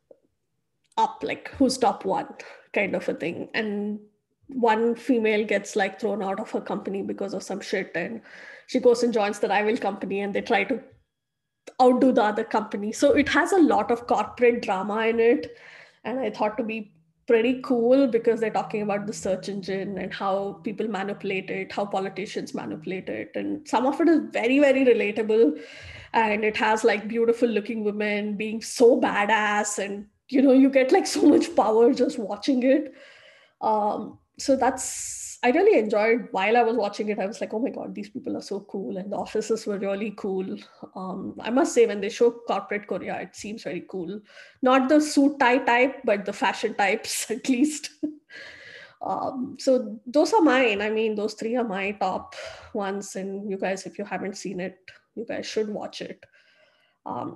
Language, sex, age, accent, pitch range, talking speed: English, female, 20-39, Indian, 205-265 Hz, 190 wpm